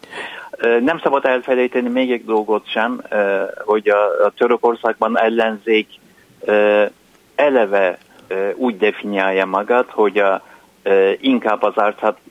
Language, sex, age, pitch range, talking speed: Hungarian, male, 50-69, 95-130 Hz, 95 wpm